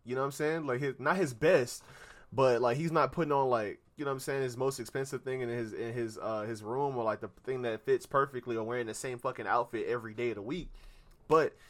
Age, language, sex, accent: 20-39, English, male, American